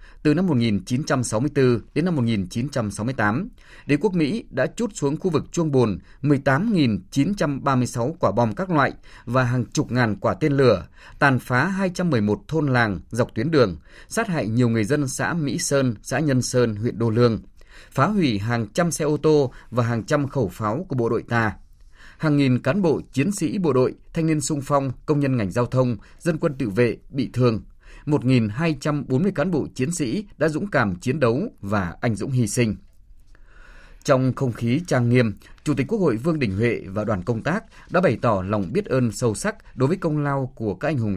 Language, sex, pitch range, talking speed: Vietnamese, male, 110-150 Hz, 200 wpm